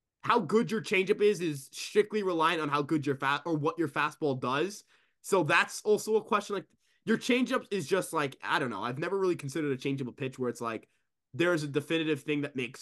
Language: English